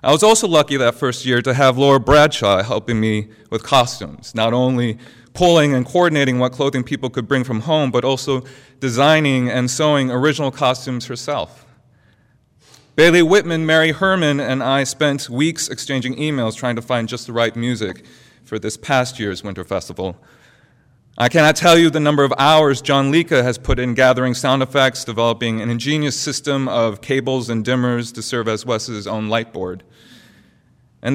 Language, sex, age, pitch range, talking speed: English, male, 30-49, 110-135 Hz, 175 wpm